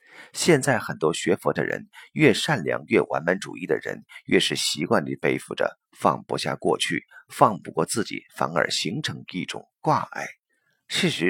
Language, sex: Chinese, male